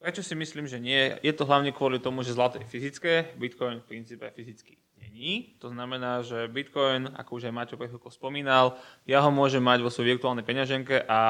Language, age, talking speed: Slovak, 20-39, 195 wpm